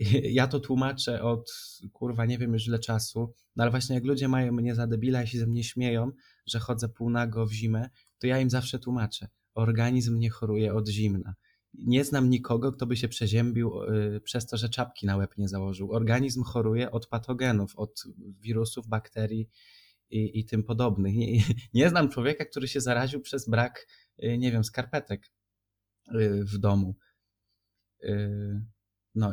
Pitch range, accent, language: 105-120 Hz, native, Polish